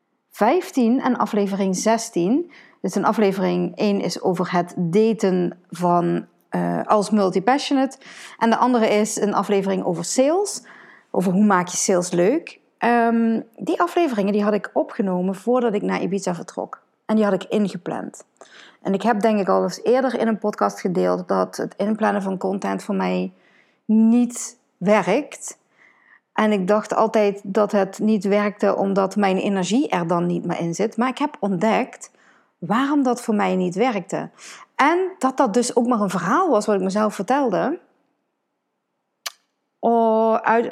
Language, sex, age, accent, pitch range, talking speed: Dutch, female, 40-59, Dutch, 190-240 Hz, 160 wpm